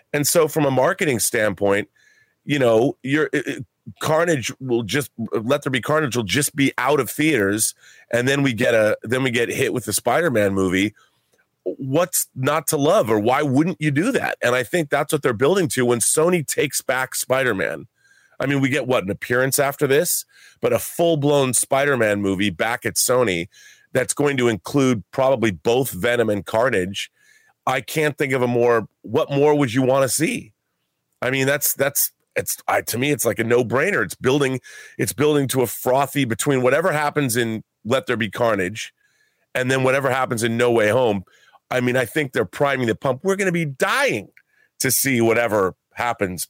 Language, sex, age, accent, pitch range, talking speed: English, male, 30-49, American, 120-150 Hz, 195 wpm